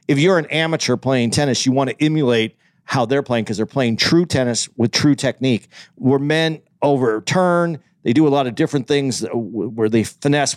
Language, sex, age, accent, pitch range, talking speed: English, male, 50-69, American, 125-170 Hz, 195 wpm